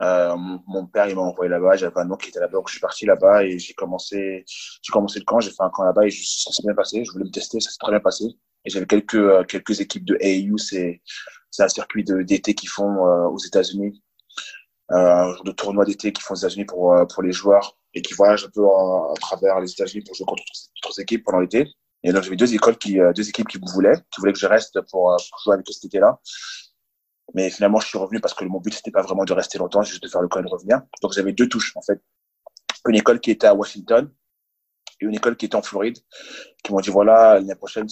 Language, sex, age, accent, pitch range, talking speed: French, male, 20-39, French, 90-105 Hz, 265 wpm